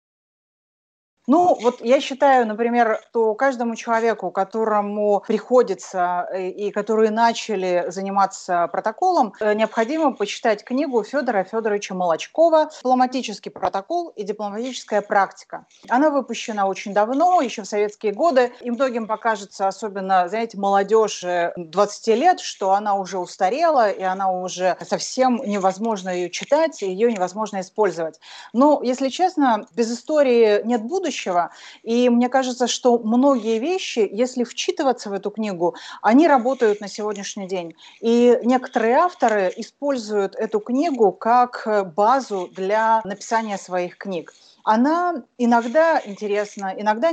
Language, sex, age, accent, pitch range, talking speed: Russian, female, 30-49, native, 200-250 Hz, 120 wpm